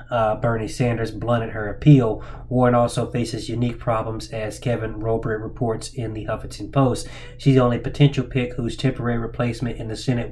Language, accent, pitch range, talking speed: English, American, 110-125 Hz, 175 wpm